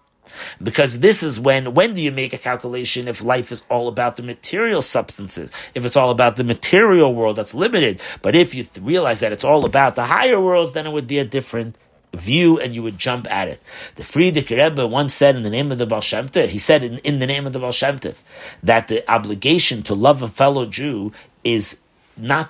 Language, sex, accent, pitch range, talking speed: English, male, American, 115-145 Hz, 215 wpm